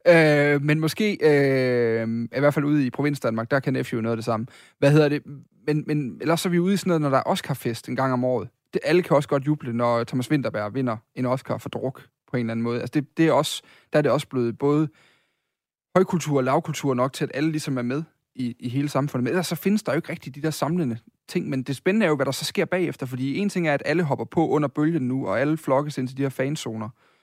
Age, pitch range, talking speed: 30-49, 125-155 Hz, 275 wpm